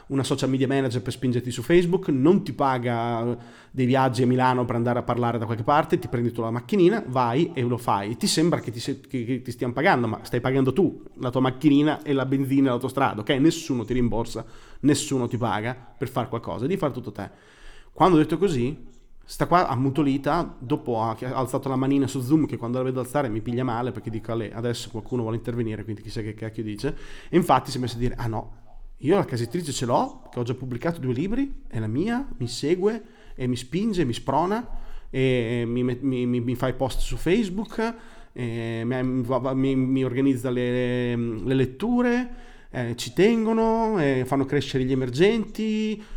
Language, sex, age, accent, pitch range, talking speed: Italian, male, 30-49, native, 120-145 Hz, 195 wpm